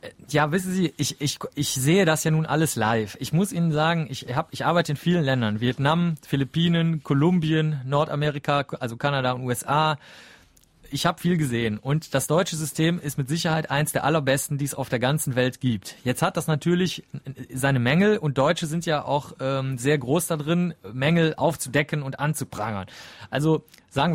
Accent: German